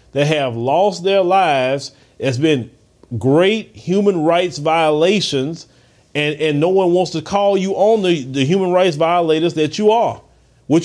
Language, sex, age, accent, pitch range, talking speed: English, male, 30-49, American, 150-205 Hz, 160 wpm